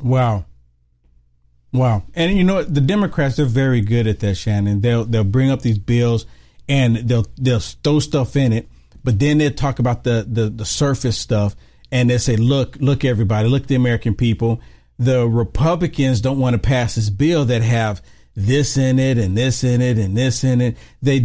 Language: English